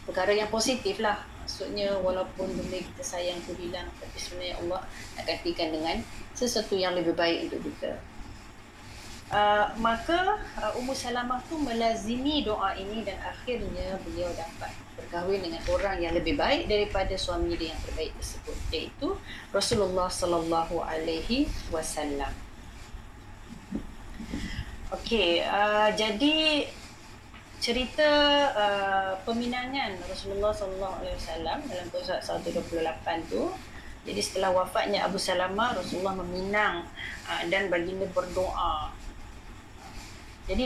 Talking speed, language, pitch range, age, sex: 115 wpm, Malay, 175-225 Hz, 30-49, female